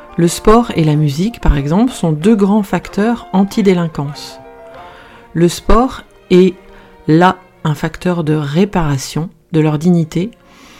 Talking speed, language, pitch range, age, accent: 130 wpm, French, 160-195 Hz, 40-59, French